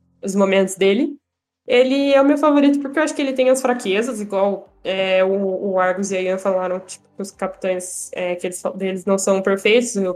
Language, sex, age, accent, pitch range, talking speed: Portuguese, female, 10-29, Brazilian, 195-220 Hz, 205 wpm